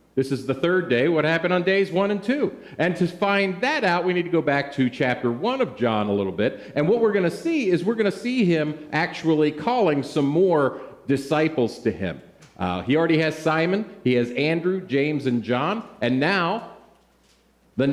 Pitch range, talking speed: 115-170 Hz, 205 wpm